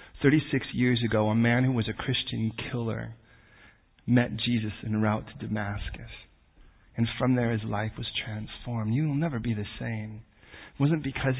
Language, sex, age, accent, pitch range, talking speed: English, male, 40-59, American, 110-140 Hz, 170 wpm